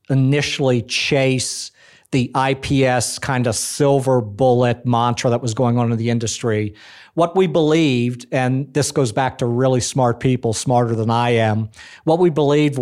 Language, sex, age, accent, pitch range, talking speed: English, male, 50-69, American, 120-140 Hz, 160 wpm